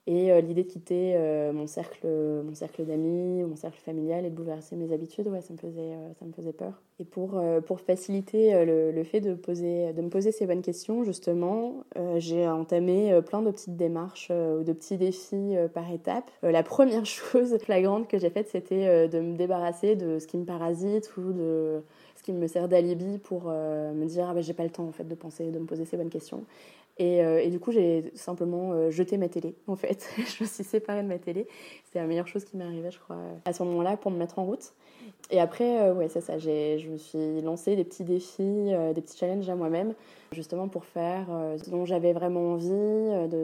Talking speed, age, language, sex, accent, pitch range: 225 wpm, 20-39, French, female, French, 165-185 Hz